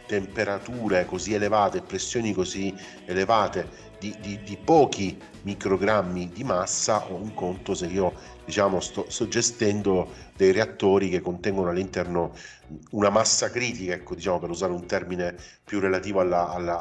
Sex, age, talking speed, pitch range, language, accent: male, 40-59, 145 wpm, 90-115 Hz, Italian, native